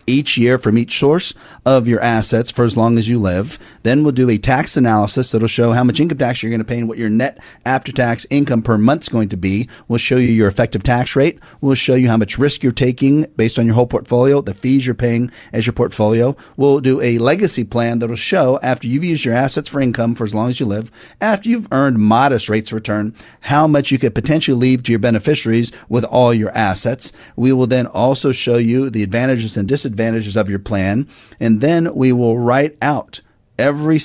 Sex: male